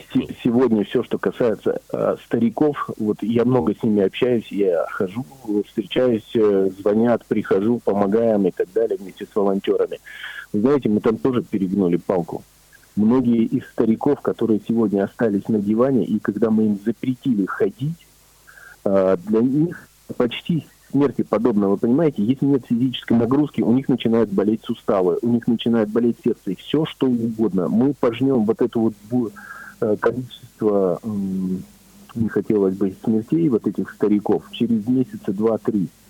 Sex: male